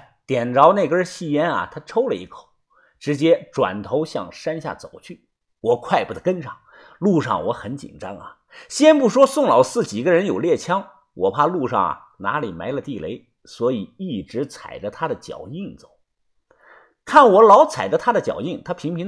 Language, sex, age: Chinese, male, 50-69